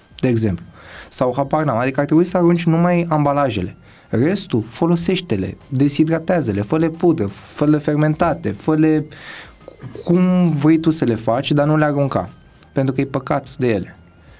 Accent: native